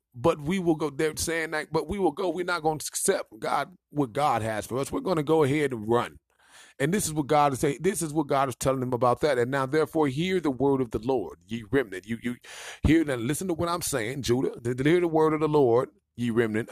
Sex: male